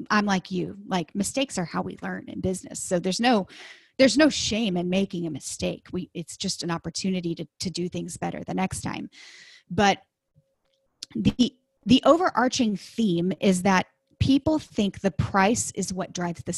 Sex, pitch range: female, 170-210 Hz